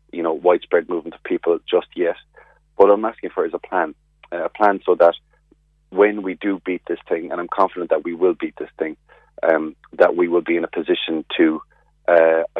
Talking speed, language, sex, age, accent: 215 wpm, English, male, 30-49, Irish